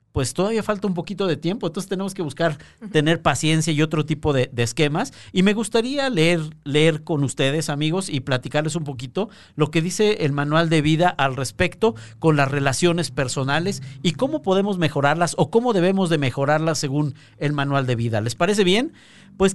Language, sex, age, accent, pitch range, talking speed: Spanish, male, 50-69, Mexican, 140-180 Hz, 190 wpm